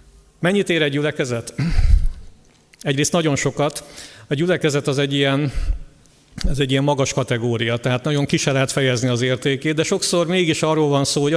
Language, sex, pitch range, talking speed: Hungarian, male, 130-155 Hz, 165 wpm